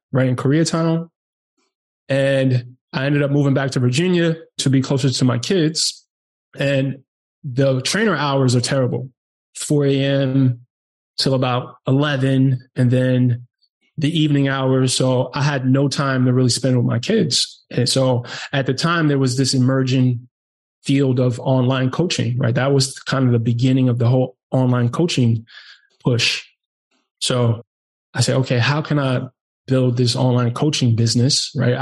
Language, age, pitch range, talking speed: English, 20-39, 125-140 Hz, 155 wpm